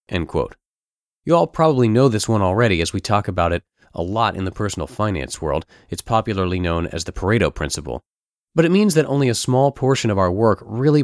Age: 30-49